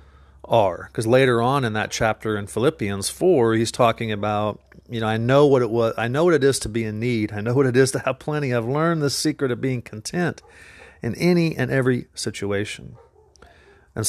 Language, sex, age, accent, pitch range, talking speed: English, male, 40-59, American, 105-125 Hz, 215 wpm